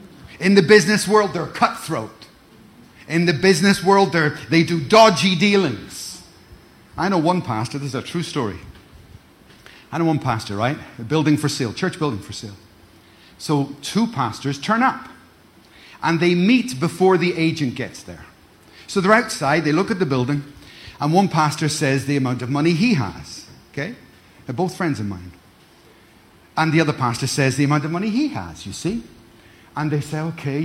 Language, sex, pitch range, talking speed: English, male, 115-180 Hz, 175 wpm